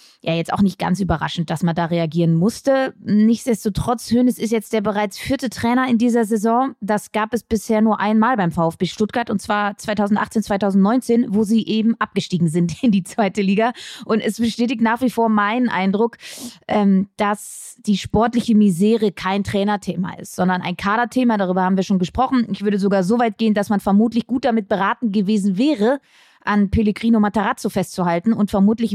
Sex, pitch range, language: female, 200-240 Hz, German